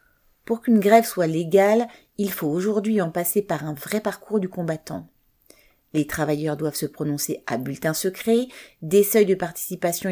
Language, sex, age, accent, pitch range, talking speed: French, female, 40-59, French, 155-200 Hz, 165 wpm